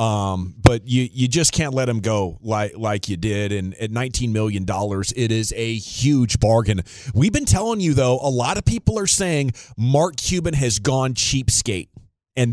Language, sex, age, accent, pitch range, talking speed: English, male, 30-49, American, 110-135 Hz, 185 wpm